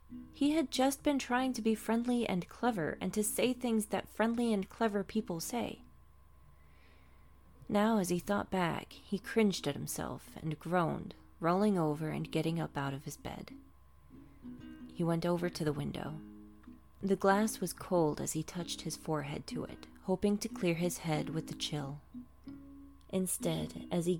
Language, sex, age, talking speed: English, female, 30-49, 170 wpm